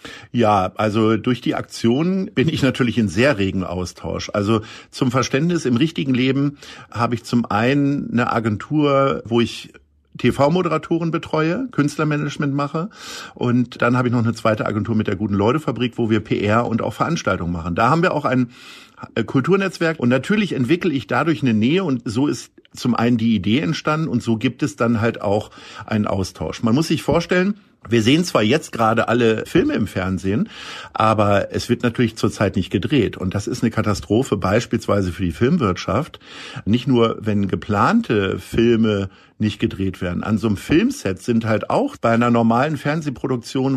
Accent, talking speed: German, 175 wpm